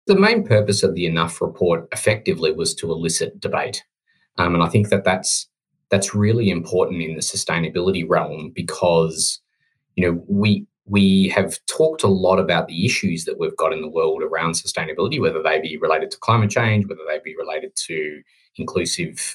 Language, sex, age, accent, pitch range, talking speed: English, male, 20-39, Australian, 85-105 Hz, 180 wpm